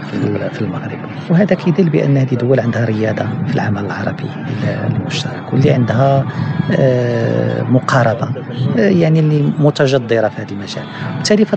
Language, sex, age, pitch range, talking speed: Arabic, male, 50-69, 110-145 Hz, 135 wpm